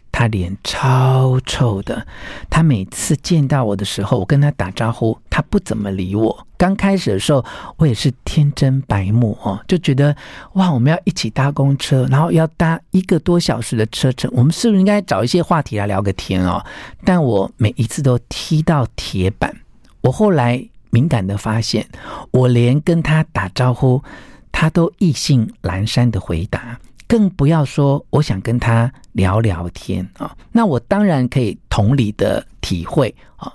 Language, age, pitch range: Chinese, 50-69, 110-160 Hz